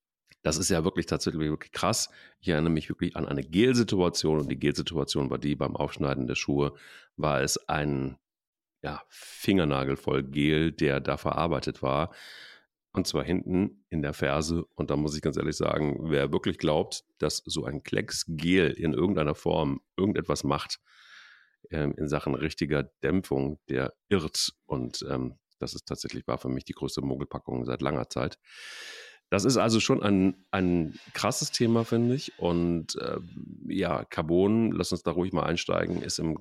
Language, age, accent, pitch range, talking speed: German, 40-59, German, 70-85 Hz, 170 wpm